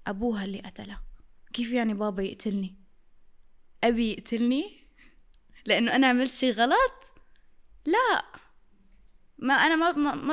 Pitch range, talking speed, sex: 225-275 Hz, 105 wpm, female